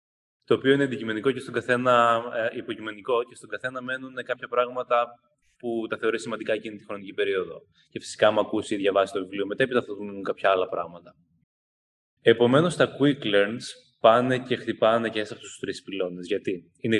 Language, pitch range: Greek, 100-125 Hz